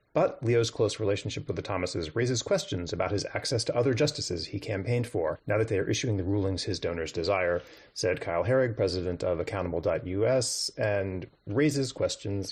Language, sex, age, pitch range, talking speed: English, male, 30-49, 95-130 Hz, 175 wpm